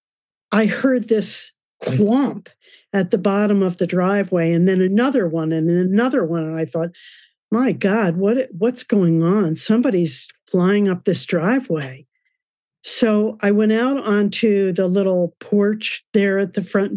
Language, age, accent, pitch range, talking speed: English, 50-69, American, 175-215 Hz, 155 wpm